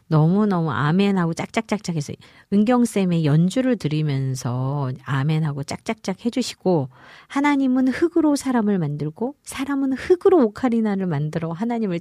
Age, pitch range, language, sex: 40-59, 135-215 Hz, Korean, female